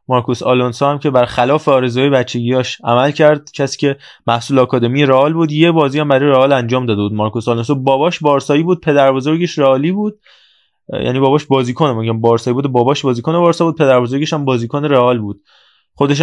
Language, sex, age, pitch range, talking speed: Persian, male, 20-39, 125-155 Hz, 185 wpm